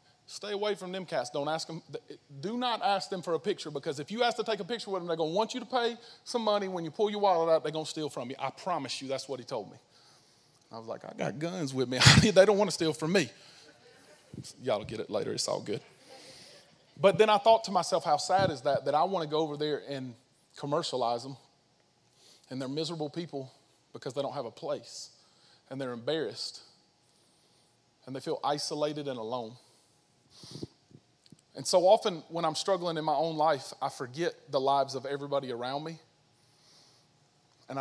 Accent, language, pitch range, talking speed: American, English, 135-170 Hz, 215 wpm